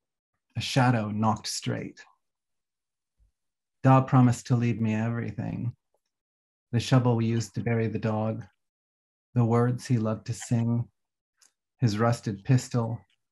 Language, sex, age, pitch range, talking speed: English, male, 30-49, 110-125 Hz, 120 wpm